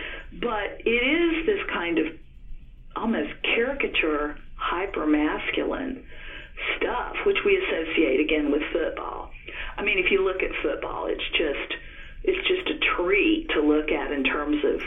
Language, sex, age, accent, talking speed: English, female, 50-69, American, 145 wpm